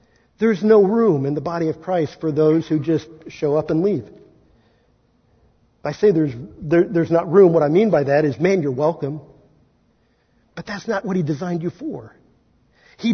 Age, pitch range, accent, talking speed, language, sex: 50-69, 155-215 Hz, American, 185 wpm, English, male